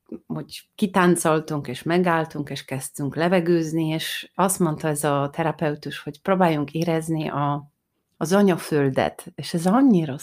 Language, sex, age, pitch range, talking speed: Hungarian, female, 30-49, 150-185 Hz, 130 wpm